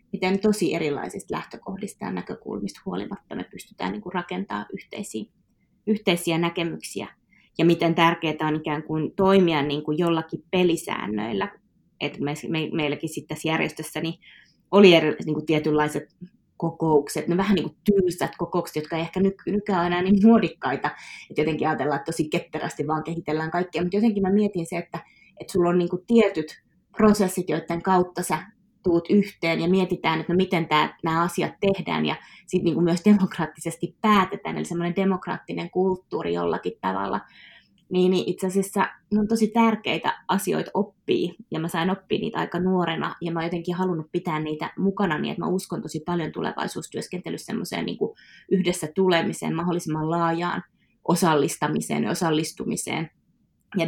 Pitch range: 160-190 Hz